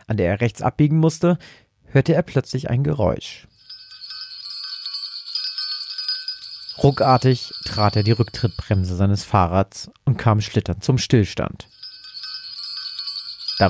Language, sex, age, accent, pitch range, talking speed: German, male, 40-59, German, 105-145 Hz, 105 wpm